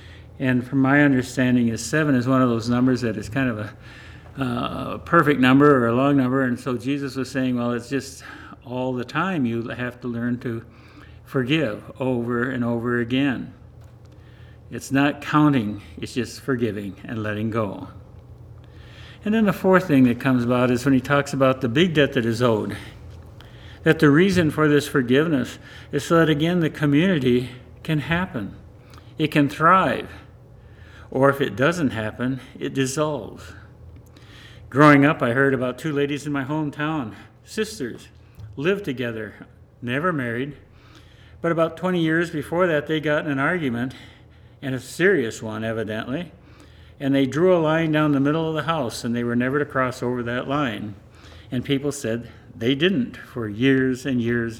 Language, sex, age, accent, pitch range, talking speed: English, male, 60-79, American, 115-145 Hz, 170 wpm